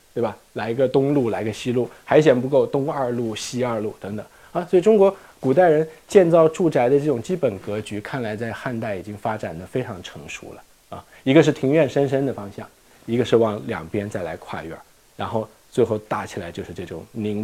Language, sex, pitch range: Chinese, male, 105-140 Hz